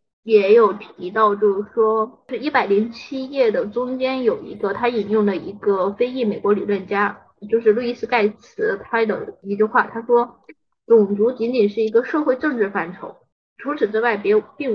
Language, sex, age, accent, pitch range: Chinese, female, 20-39, native, 205-260 Hz